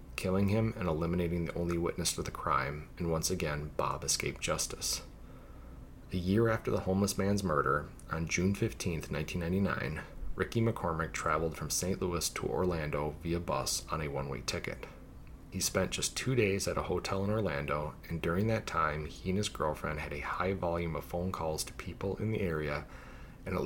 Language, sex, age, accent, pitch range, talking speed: English, male, 30-49, American, 80-95 Hz, 185 wpm